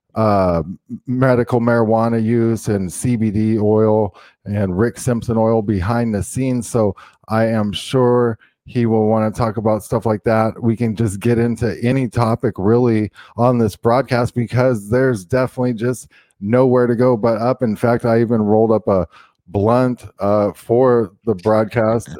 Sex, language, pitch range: male, English, 110-125 Hz